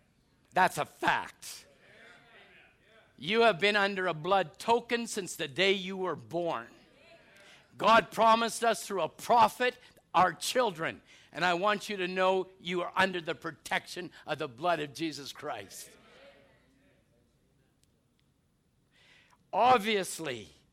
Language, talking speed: English, 120 wpm